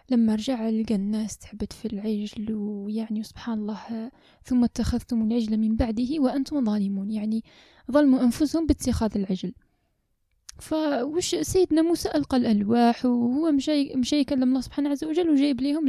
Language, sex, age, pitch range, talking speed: Arabic, female, 10-29, 225-280 Hz, 140 wpm